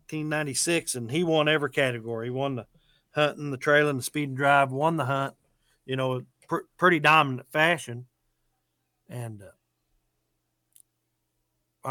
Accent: American